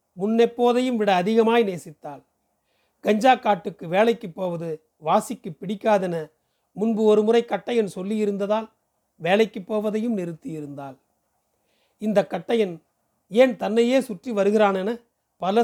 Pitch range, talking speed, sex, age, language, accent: 175-225 Hz, 95 wpm, male, 40-59, Tamil, native